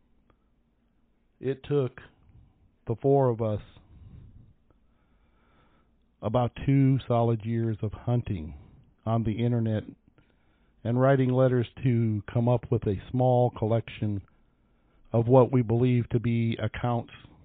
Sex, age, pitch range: male, 50-69, 105-125 Hz